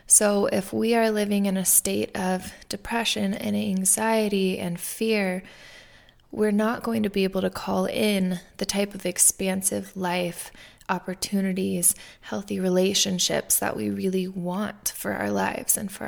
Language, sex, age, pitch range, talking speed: English, female, 20-39, 185-210 Hz, 150 wpm